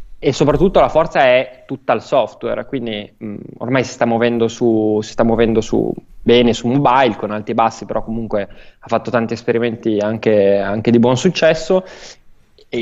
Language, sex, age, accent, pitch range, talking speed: Italian, male, 20-39, native, 110-125 Hz, 180 wpm